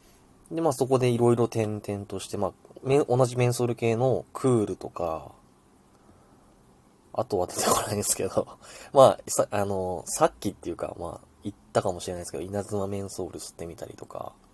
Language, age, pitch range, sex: Japanese, 20-39, 95-135 Hz, male